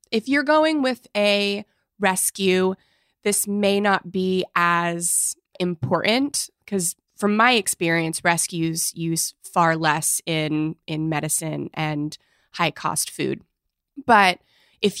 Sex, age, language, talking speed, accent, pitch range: female, 20-39, English, 110 wpm, American, 160-200 Hz